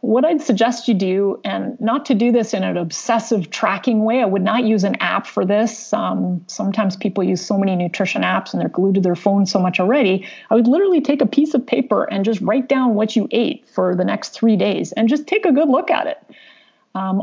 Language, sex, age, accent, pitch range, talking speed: English, female, 30-49, American, 200-260 Hz, 240 wpm